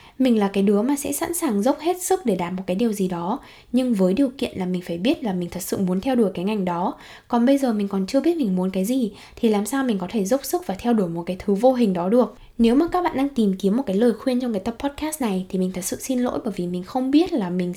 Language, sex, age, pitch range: Vietnamese, female, 10-29, 195-255 Hz